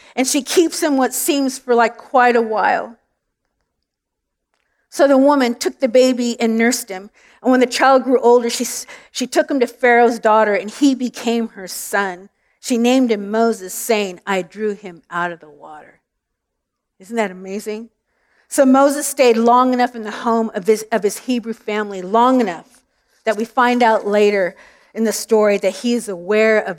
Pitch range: 200-245 Hz